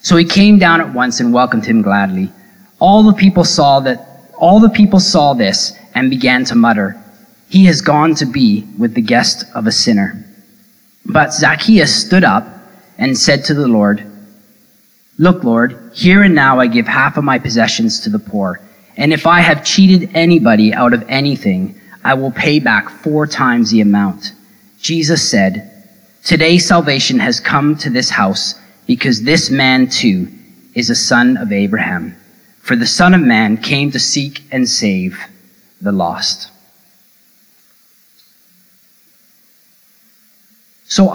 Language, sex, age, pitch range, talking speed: English, male, 30-49, 135-215 Hz, 155 wpm